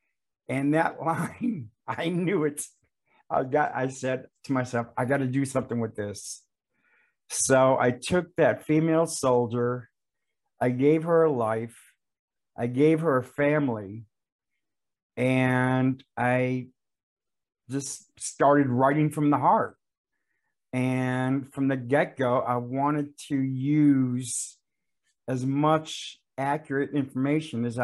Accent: American